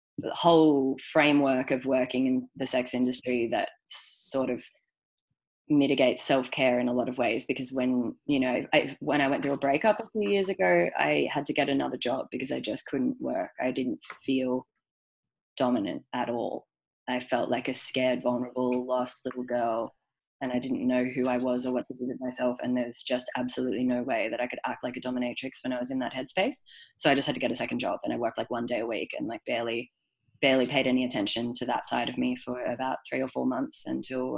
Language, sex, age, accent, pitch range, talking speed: English, female, 20-39, Australian, 125-145 Hz, 225 wpm